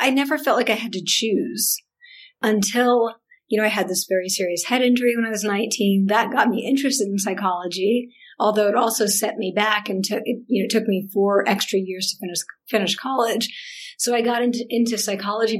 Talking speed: 210 wpm